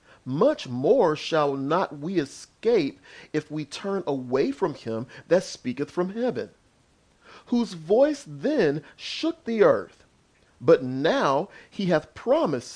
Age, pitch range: 40-59, 135-225 Hz